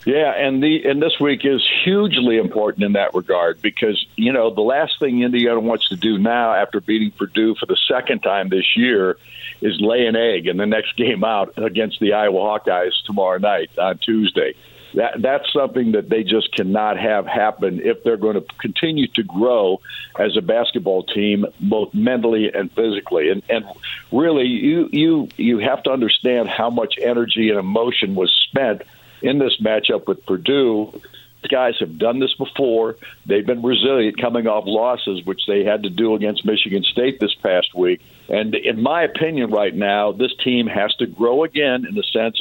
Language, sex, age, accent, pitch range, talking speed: English, male, 60-79, American, 105-135 Hz, 185 wpm